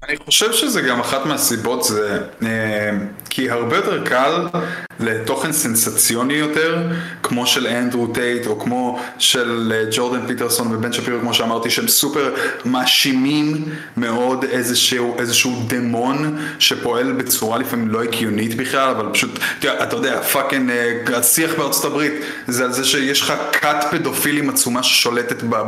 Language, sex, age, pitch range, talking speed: Hebrew, male, 20-39, 125-160 Hz, 135 wpm